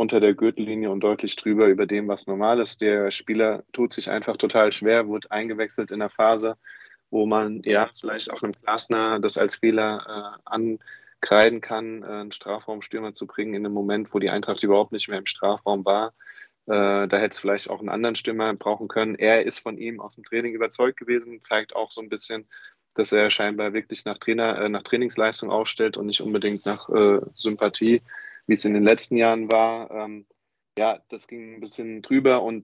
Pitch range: 105-115 Hz